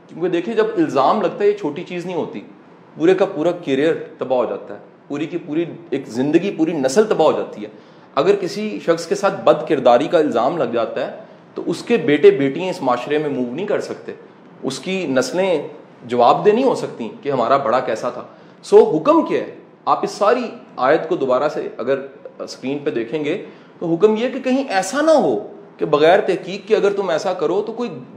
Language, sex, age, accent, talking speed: English, male, 40-59, Indian, 185 wpm